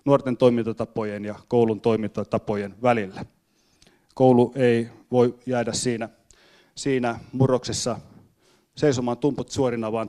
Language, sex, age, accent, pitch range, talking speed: Finnish, male, 30-49, native, 115-130 Hz, 100 wpm